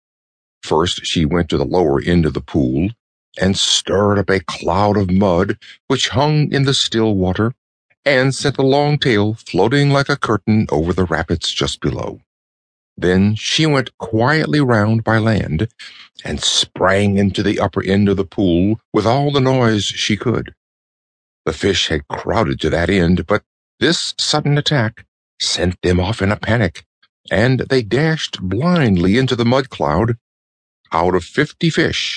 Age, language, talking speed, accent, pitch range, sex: 60-79, English, 165 wpm, American, 90-125 Hz, male